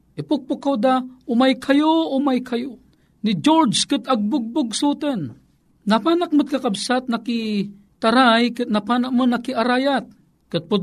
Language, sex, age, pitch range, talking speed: Filipino, male, 50-69, 205-255 Hz, 115 wpm